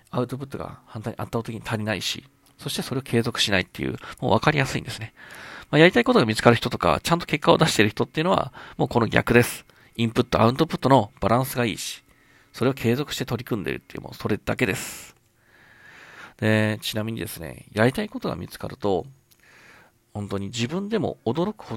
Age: 40-59